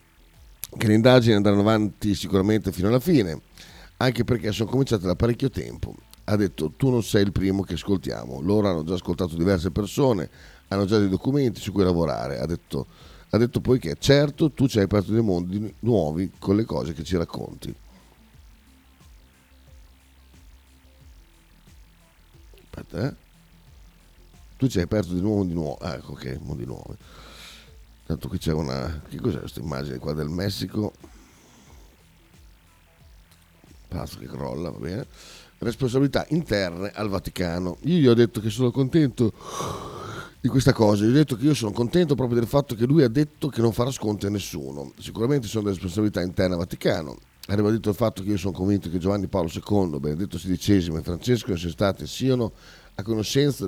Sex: male